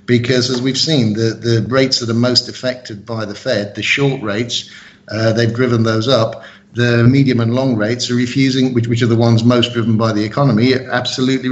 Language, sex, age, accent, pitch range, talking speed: English, male, 50-69, British, 115-130 Hz, 210 wpm